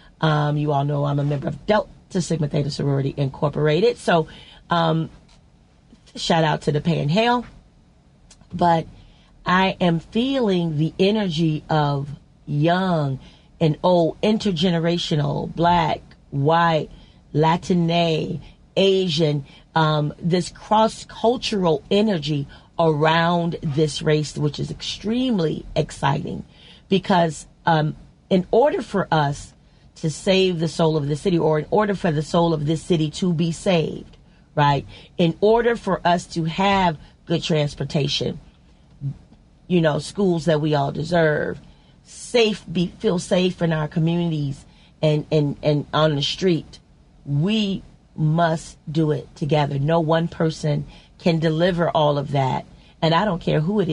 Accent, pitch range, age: American, 150-180 Hz, 40-59